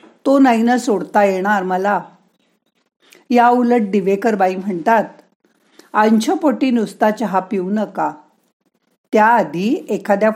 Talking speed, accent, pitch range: 95 wpm, native, 190-245 Hz